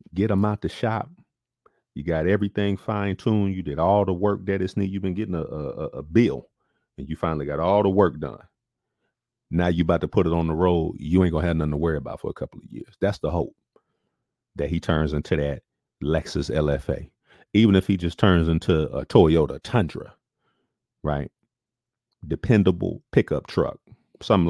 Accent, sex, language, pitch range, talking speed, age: American, male, English, 80-110 Hz, 195 wpm, 40-59